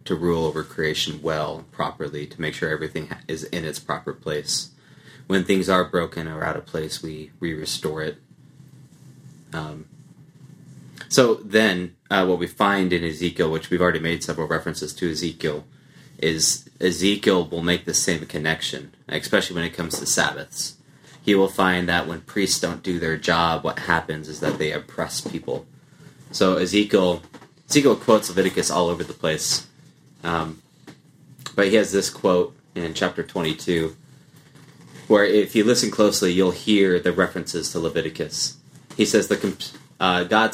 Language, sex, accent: English, male, American